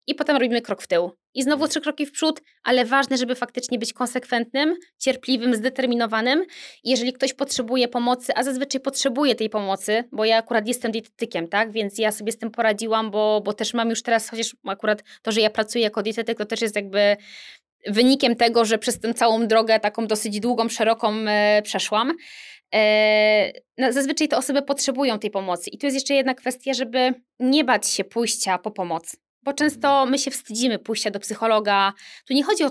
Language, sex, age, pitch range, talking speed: Polish, female, 20-39, 215-260 Hz, 185 wpm